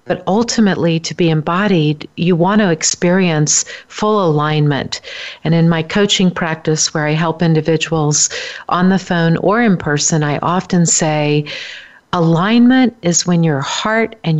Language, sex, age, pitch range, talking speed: English, female, 50-69, 155-190 Hz, 145 wpm